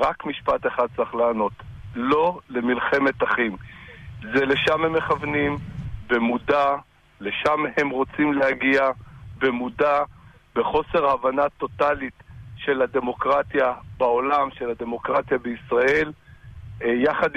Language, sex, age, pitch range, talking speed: Hebrew, male, 50-69, 120-150 Hz, 95 wpm